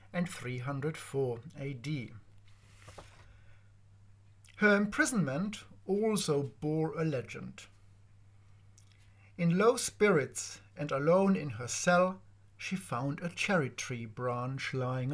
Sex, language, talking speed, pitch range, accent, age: male, English, 95 wpm, 100-165 Hz, German, 50-69